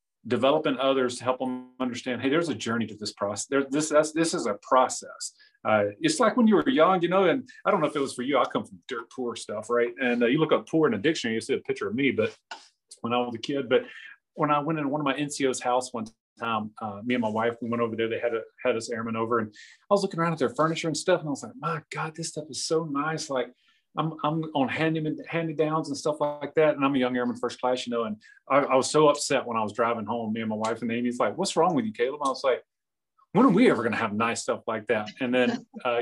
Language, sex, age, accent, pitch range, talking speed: English, male, 40-59, American, 120-155 Hz, 290 wpm